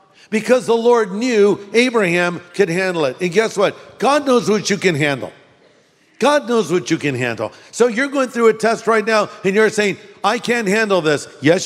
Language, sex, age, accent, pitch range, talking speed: English, male, 50-69, American, 155-210 Hz, 200 wpm